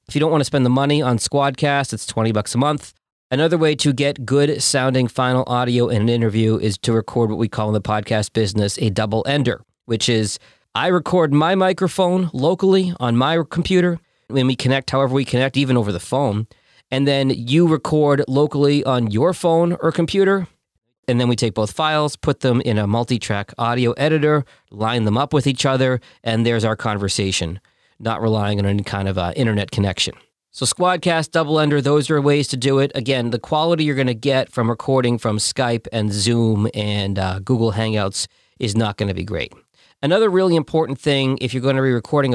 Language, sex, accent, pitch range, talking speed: English, male, American, 110-145 Hz, 200 wpm